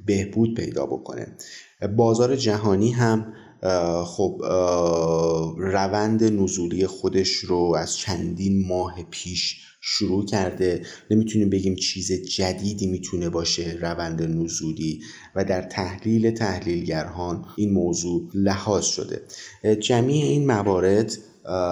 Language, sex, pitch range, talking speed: Persian, male, 85-100 Hz, 100 wpm